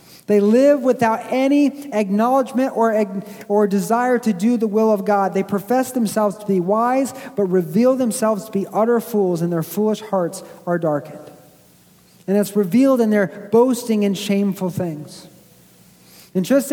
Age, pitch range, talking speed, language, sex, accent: 40-59, 195-240 Hz, 160 wpm, English, male, American